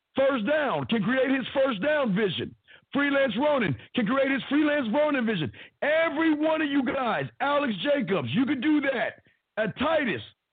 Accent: American